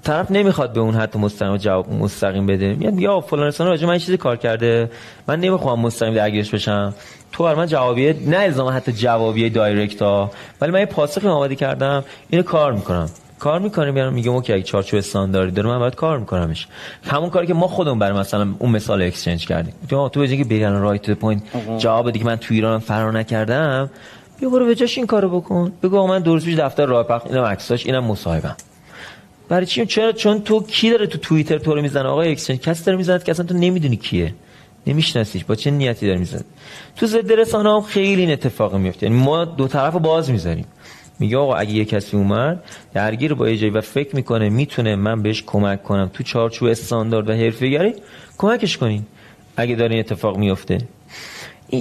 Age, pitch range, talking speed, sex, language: 30-49, 110-165 Hz, 195 wpm, male, Persian